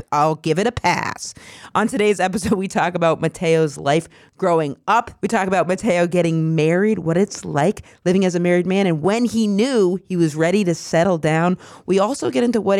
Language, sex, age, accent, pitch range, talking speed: English, female, 40-59, American, 150-200 Hz, 205 wpm